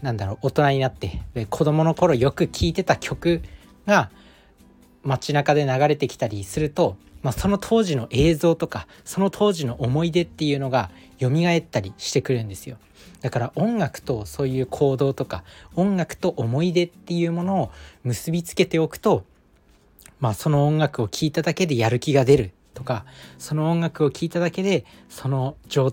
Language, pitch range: Japanese, 110-155 Hz